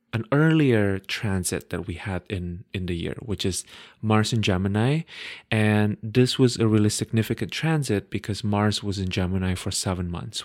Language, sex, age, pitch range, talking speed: English, male, 30-49, 100-125 Hz, 170 wpm